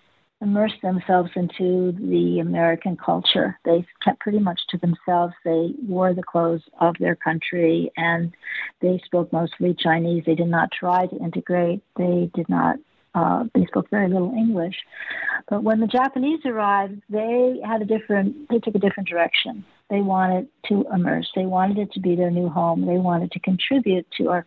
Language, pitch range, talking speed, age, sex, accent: English, 175-215 Hz, 175 wpm, 50-69, female, American